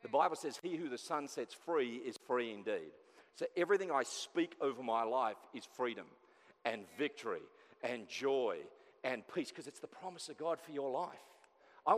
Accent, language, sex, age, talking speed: Australian, English, male, 40-59, 185 wpm